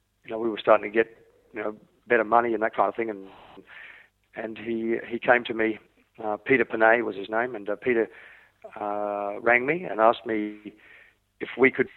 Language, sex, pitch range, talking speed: French, male, 110-125 Hz, 205 wpm